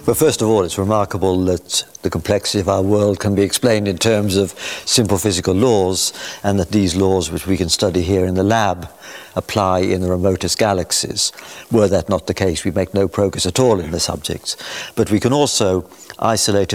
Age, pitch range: 60-79, 90-105 Hz